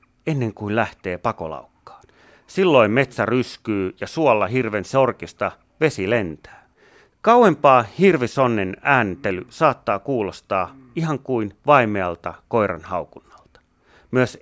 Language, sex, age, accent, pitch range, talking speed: Finnish, male, 30-49, native, 100-140 Hz, 100 wpm